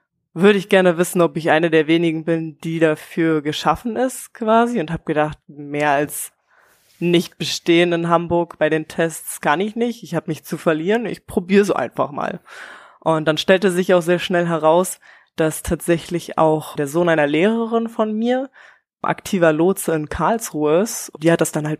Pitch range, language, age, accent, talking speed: 160-185 Hz, German, 20-39, German, 185 wpm